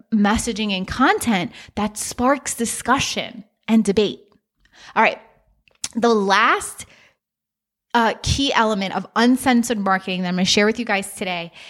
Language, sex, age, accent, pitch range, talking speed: English, female, 20-39, American, 210-260 Hz, 140 wpm